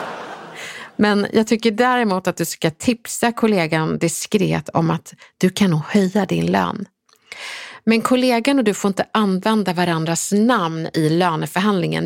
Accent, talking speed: native, 140 wpm